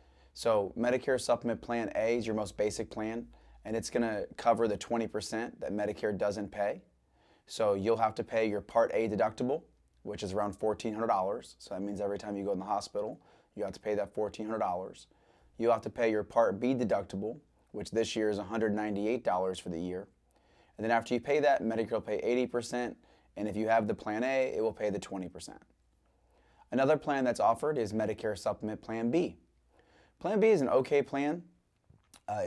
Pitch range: 105-120 Hz